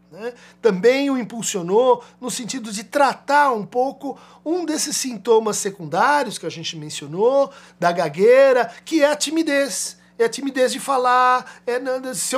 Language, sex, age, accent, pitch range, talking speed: Portuguese, male, 50-69, Brazilian, 210-295 Hz, 145 wpm